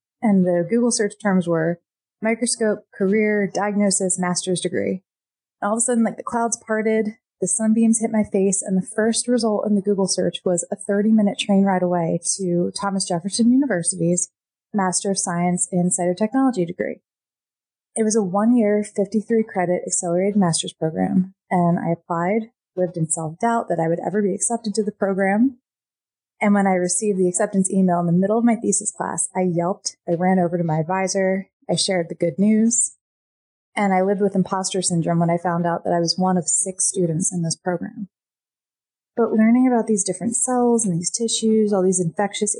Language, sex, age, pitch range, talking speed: English, female, 20-39, 175-210 Hz, 185 wpm